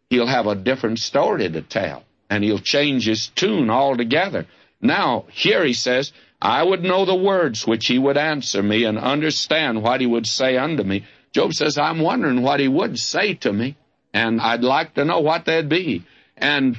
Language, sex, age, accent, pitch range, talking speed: English, male, 60-79, American, 105-145 Hz, 195 wpm